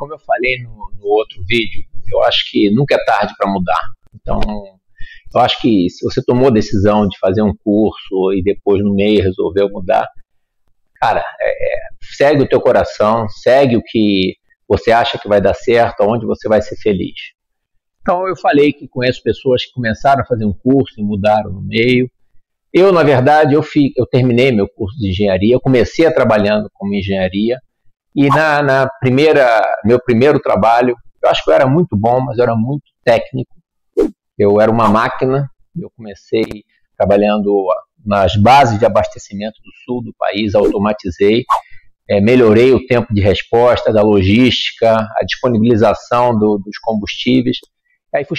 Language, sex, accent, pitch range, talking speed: Portuguese, male, Brazilian, 105-130 Hz, 170 wpm